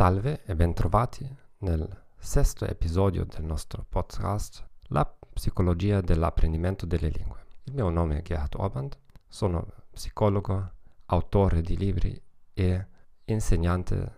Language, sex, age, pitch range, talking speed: Italian, male, 40-59, 85-105 Hz, 115 wpm